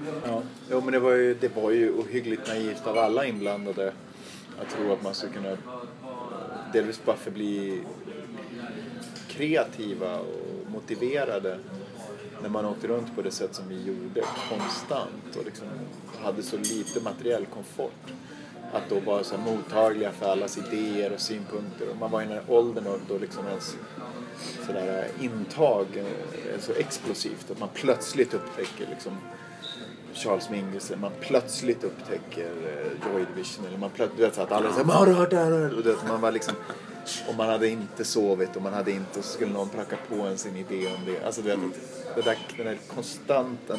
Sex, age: male, 30-49